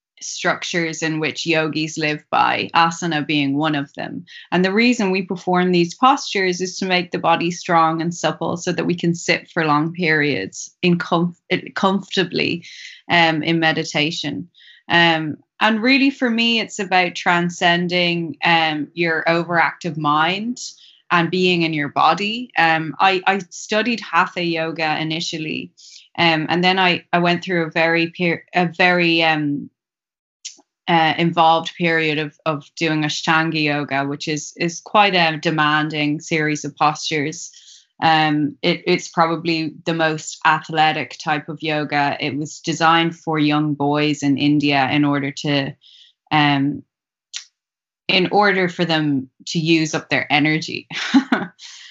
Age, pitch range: 20-39, 155-175 Hz